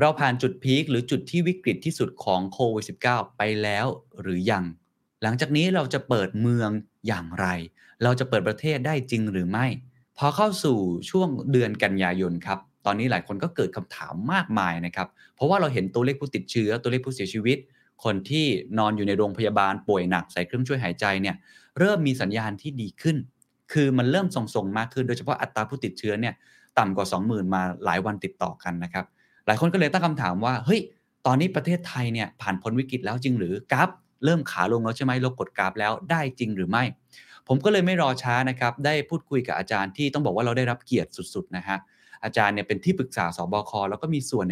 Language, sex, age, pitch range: Thai, male, 20-39, 100-145 Hz